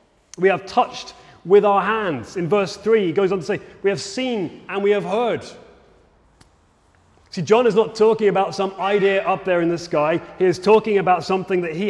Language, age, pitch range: English, 30-49, 175-215 Hz